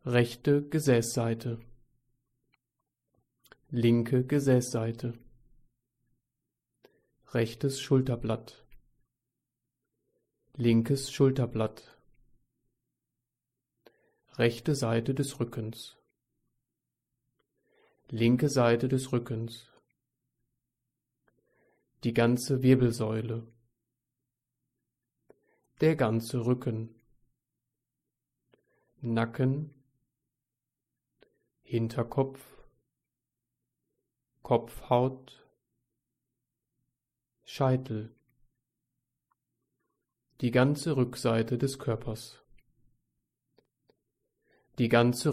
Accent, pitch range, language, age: German, 115-130 Hz, German, 30-49